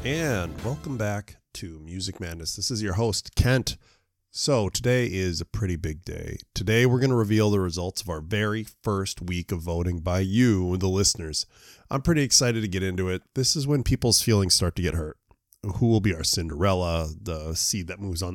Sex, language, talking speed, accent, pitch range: male, English, 205 wpm, American, 90-115 Hz